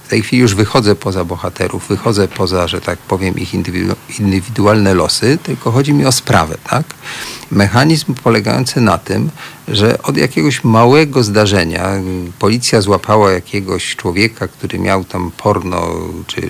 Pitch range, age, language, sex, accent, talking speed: 95-125 Hz, 50-69, Polish, male, native, 140 wpm